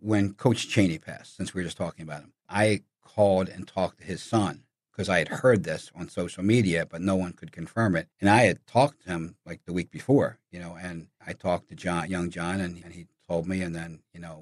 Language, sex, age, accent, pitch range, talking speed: English, male, 50-69, American, 90-110 Hz, 250 wpm